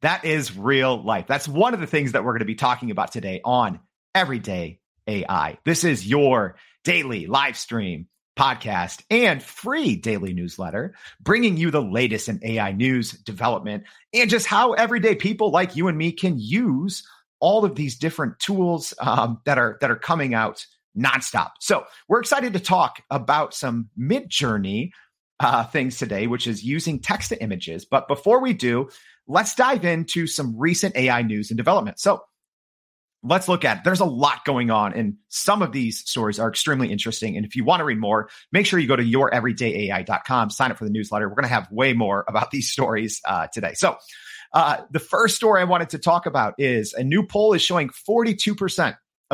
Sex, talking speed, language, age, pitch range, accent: male, 190 wpm, English, 40-59, 115-180 Hz, American